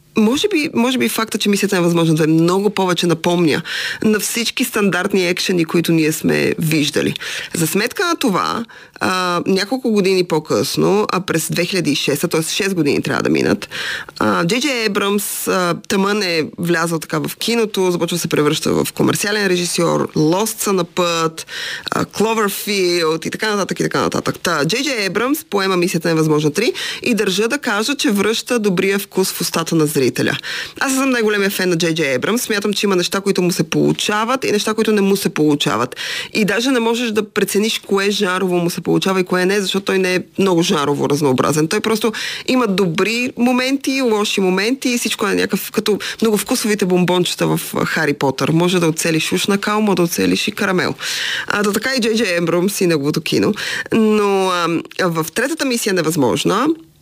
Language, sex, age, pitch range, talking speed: Bulgarian, female, 20-39, 170-215 Hz, 180 wpm